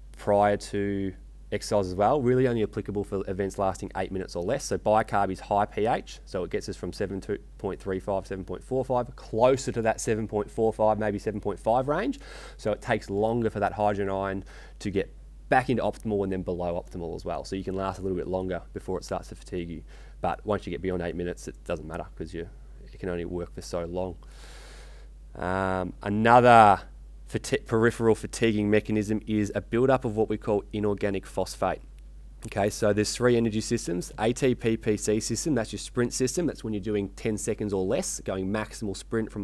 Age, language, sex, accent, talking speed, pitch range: 20-39, English, male, Australian, 190 wpm, 95-115 Hz